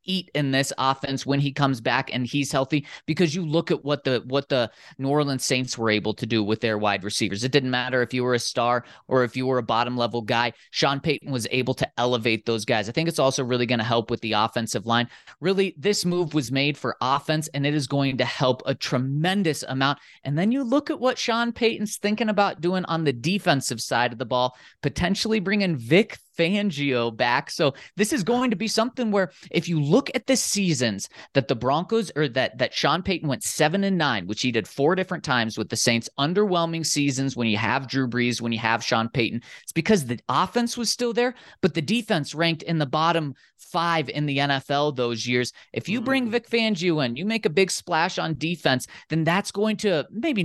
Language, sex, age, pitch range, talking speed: English, male, 30-49, 125-185 Hz, 225 wpm